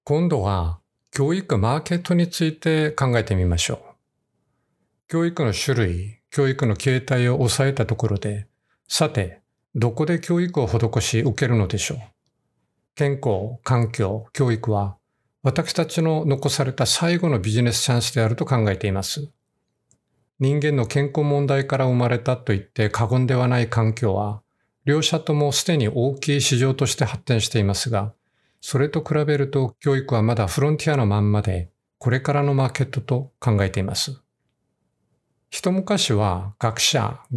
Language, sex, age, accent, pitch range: Japanese, male, 50-69, native, 110-145 Hz